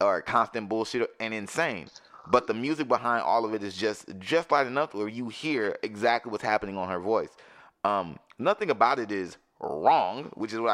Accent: American